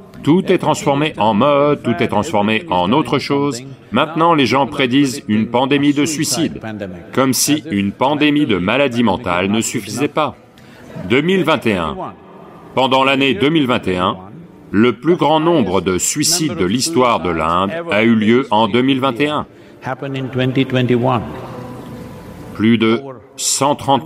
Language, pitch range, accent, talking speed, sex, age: English, 110-145 Hz, French, 125 wpm, male, 40-59